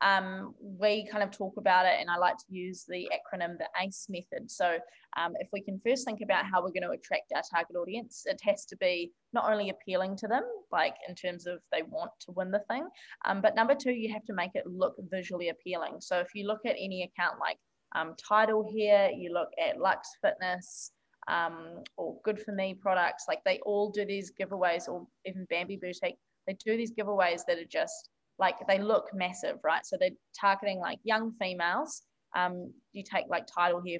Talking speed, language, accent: 210 wpm, English, Australian